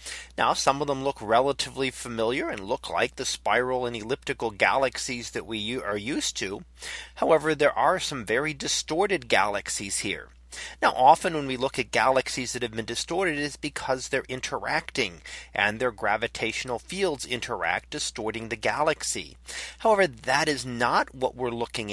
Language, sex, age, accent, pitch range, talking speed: English, male, 30-49, American, 115-155 Hz, 160 wpm